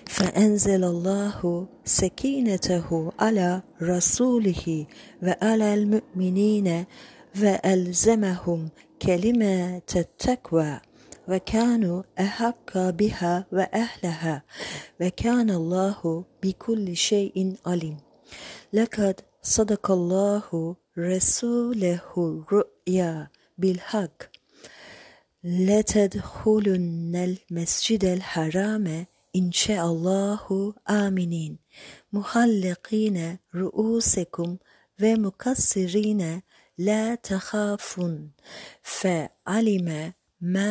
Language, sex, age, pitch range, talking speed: Turkish, female, 40-59, 175-210 Hz, 60 wpm